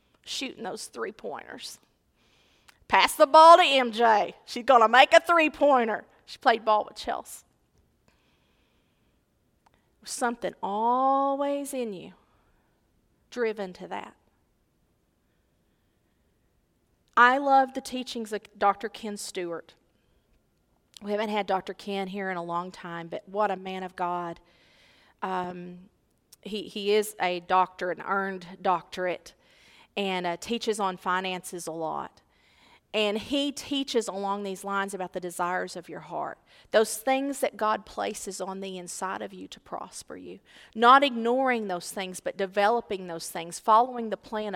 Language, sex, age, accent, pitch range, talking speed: English, female, 40-59, American, 185-235 Hz, 135 wpm